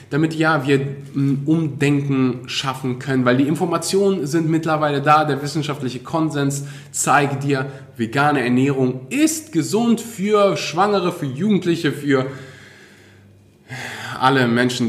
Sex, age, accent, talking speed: male, 20-39, German, 115 wpm